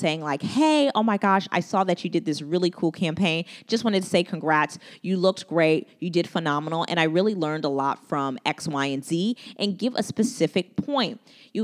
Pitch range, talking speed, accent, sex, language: 150-200 Hz, 220 wpm, American, female, English